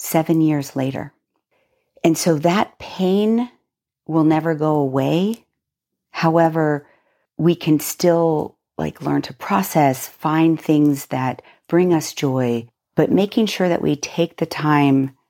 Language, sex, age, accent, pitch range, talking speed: English, female, 50-69, American, 130-165 Hz, 130 wpm